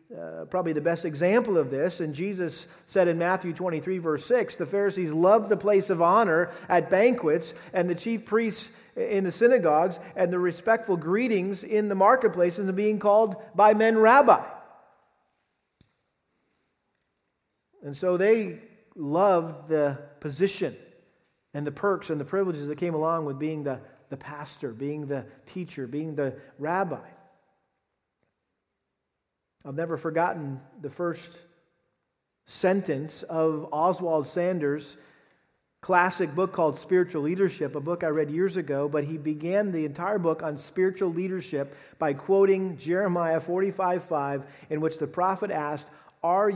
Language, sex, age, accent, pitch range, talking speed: English, male, 50-69, American, 150-190 Hz, 140 wpm